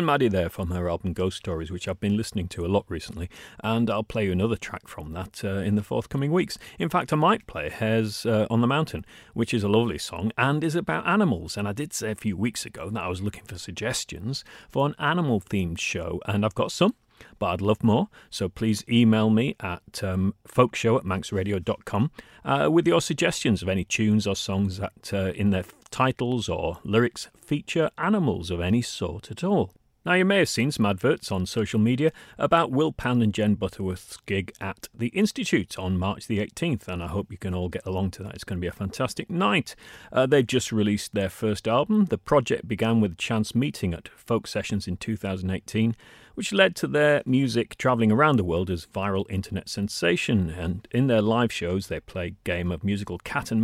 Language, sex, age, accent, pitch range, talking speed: English, male, 40-59, British, 95-120 Hz, 215 wpm